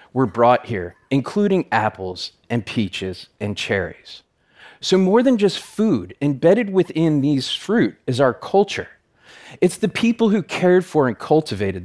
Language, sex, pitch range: Arabic, male, 115-170 Hz